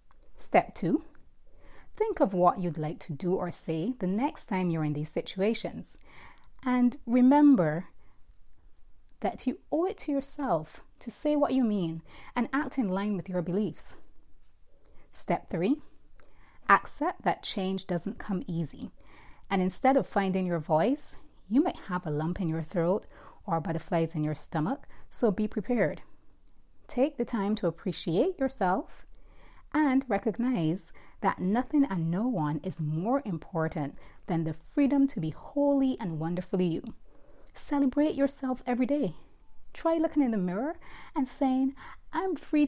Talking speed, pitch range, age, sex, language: 150 wpm, 165-255 Hz, 30-49, female, English